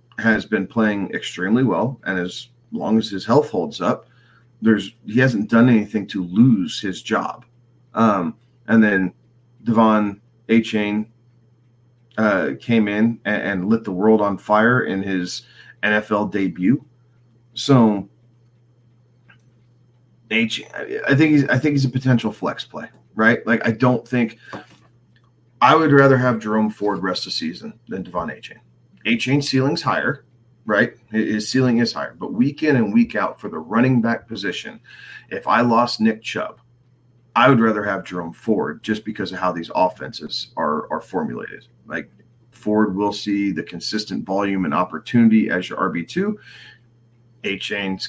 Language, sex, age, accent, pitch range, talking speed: English, male, 30-49, American, 105-120 Hz, 155 wpm